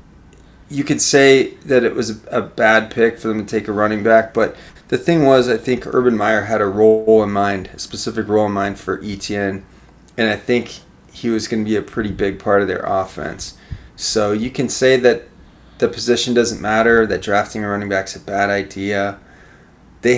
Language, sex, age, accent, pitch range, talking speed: English, male, 20-39, American, 100-115 Hz, 210 wpm